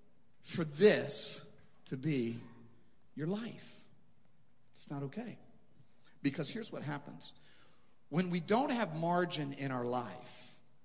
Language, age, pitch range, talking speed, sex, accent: English, 40-59, 125-175 Hz, 115 wpm, male, American